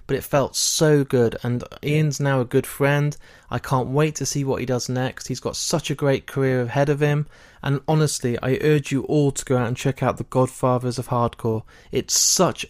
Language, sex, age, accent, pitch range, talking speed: English, male, 20-39, British, 125-150 Hz, 220 wpm